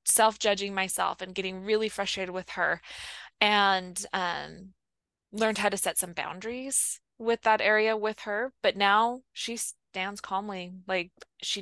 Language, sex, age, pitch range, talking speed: English, female, 20-39, 185-215 Hz, 145 wpm